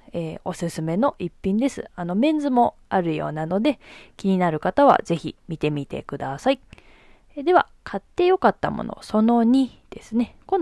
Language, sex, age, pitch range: Japanese, female, 20-39, 165-245 Hz